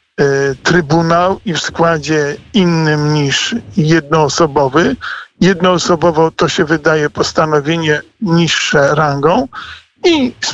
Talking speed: 90 wpm